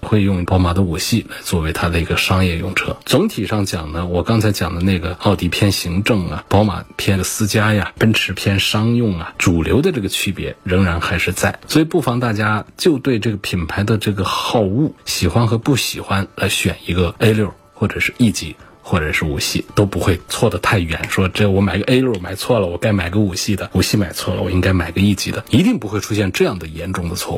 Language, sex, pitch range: Chinese, male, 90-115 Hz